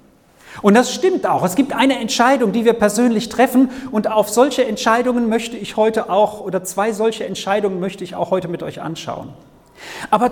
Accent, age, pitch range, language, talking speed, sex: German, 40-59, 185-255 Hz, German, 185 wpm, male